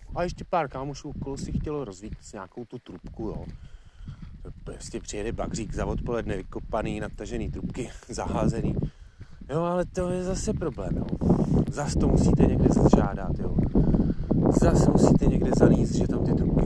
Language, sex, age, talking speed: Czech, male, 30-49, 150 wpm